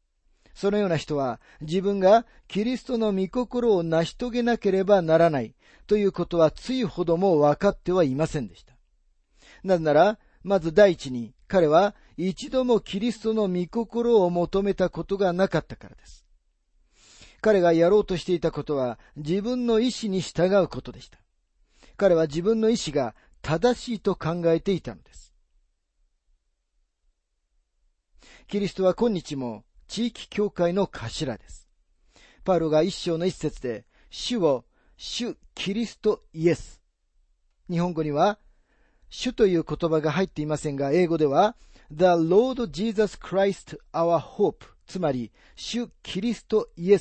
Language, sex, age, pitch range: Japanese, male, 40-59, 140-205 Hz